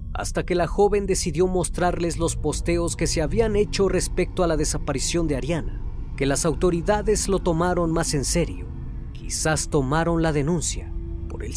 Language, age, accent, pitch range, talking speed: Spanish, 40-59, Mexican, 135-175 Hz, 165 wpm